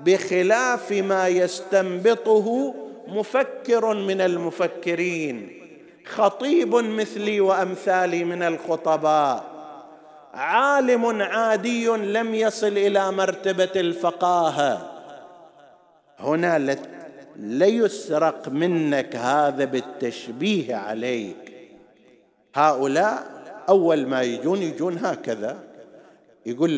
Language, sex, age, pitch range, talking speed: Arabic, male, 50-69, 155-225 Hz, 70 wpm